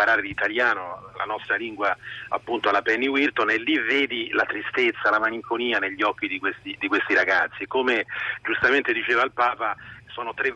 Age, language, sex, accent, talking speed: 40-59, Italian, male, native, 170 wpm